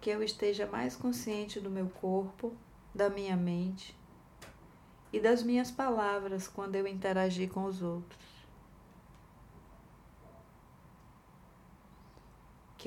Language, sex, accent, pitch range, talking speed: Portuguese, female, Brazilian, 185-225 Hz, 105 wpm